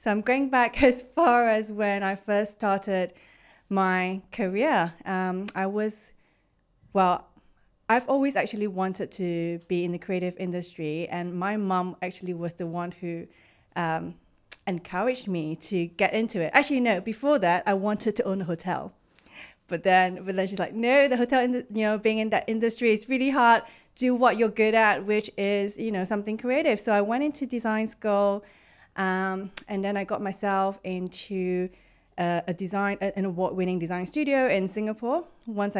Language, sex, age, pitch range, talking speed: English, female, 30-49, 185-230 Hz, 175 wpm